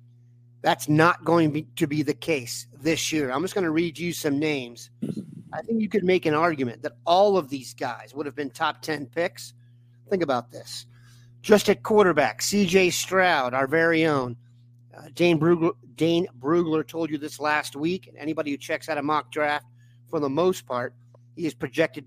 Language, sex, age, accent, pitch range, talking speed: English, male, 40-59, American, 125-170 Hz, 195 wpm